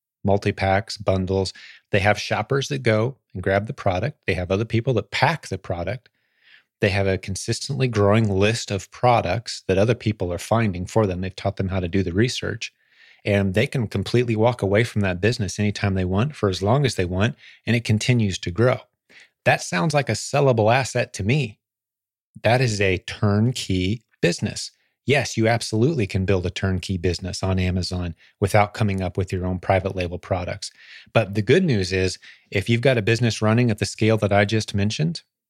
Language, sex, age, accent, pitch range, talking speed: English, male, 30-49, American, 95-115 Hz, 195 wpm